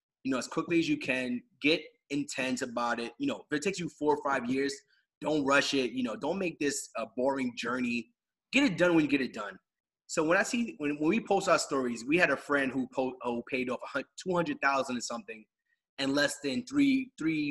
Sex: male